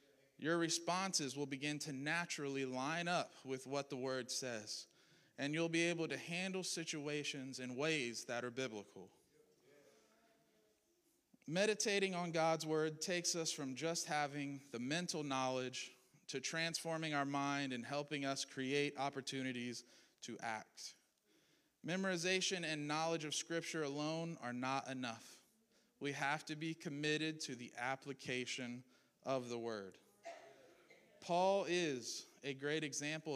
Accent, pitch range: American, 130-165 Hz